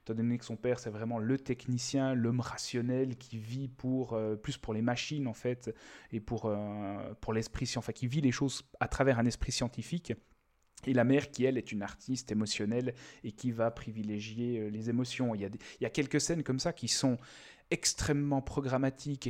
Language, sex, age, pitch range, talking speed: French, male, 30-49, 110-130 Hz, 210 wpm